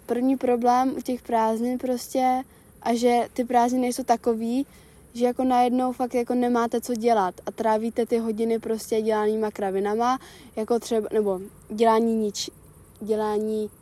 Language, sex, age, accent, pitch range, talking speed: Czech, female, 20-39, native, 210-250 Hz, 145 wpm